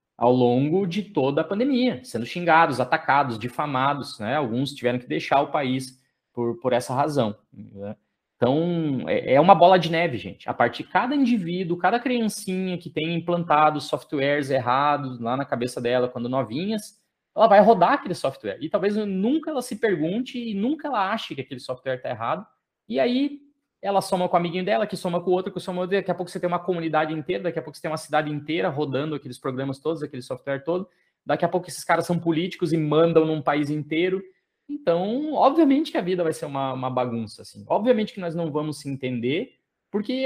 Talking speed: 205 wpm